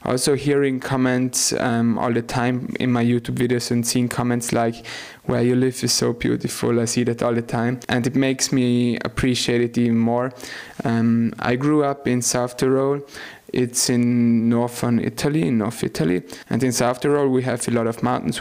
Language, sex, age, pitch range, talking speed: English, male, 20-39, 115-125 Hz, 190 wpm